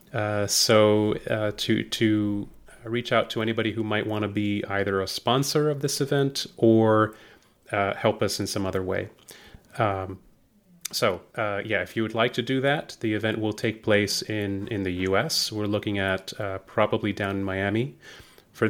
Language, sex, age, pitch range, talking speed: English, male, 30-49, 100-115 Hz, 185 wpm